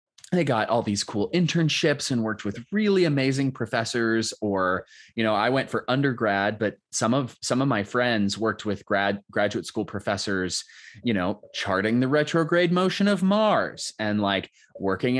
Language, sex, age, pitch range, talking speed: English, male, 20-39, 105-155 Hz, 170 wpm